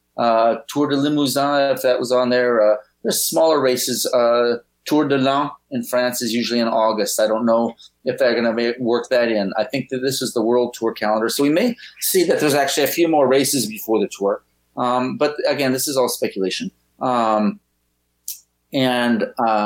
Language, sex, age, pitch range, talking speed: English, male, 30-49, 105-130 Hz, 200 wpm